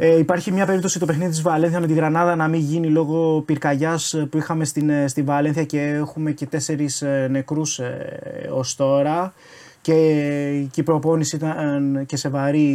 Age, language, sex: 20-39, Greek, male